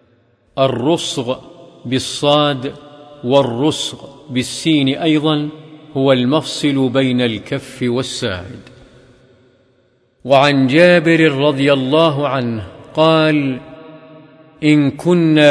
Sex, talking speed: male, 70 wpm